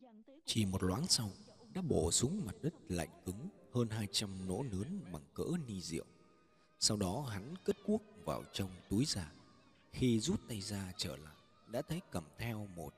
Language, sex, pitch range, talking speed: Vietnamese, male, 95-145 Hz, 185 wpm